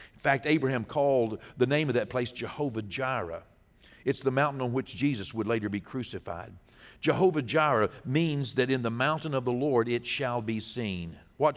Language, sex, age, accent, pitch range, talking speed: English, male, 60-79, American, 120-160 Hz, 185 wpm